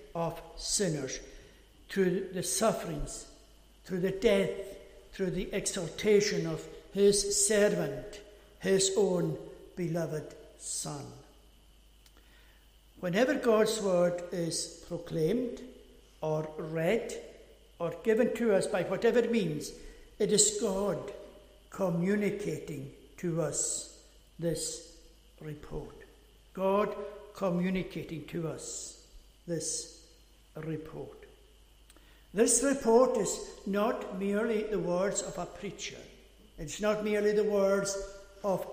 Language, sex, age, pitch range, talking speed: English, male, 60-79, 175-215 Hz, 95 wpm